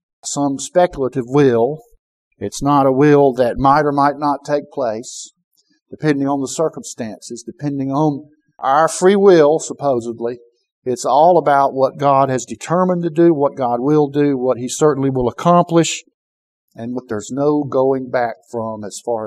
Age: 50-69